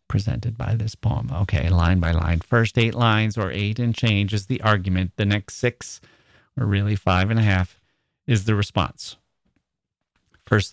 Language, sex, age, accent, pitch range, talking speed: English, male, 40-59, American, 100-125 Hz, 175 wpm